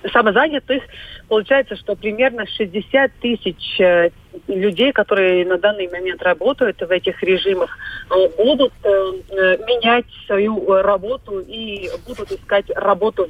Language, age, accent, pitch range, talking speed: Russian, 30-49, native, 185-220 Hz, 105 wpm